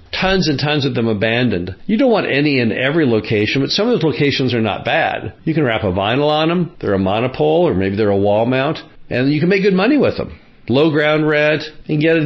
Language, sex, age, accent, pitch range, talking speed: English, male, 50-69, American, 115-150 Hz, 250 wpm